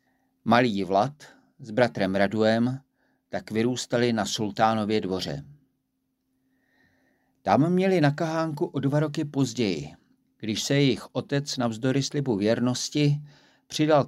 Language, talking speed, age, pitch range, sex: Czech, 110 wpm, 50-69, 110-140 Hz, male